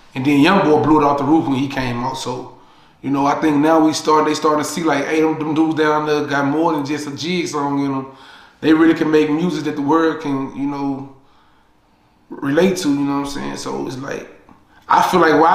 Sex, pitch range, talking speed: male, 150-185 Hz, 250 wpm